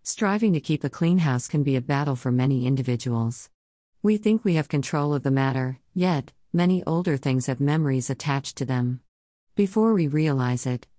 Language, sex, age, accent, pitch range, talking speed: English, female, 50-69, American, 130-165 Hz, 185 wpm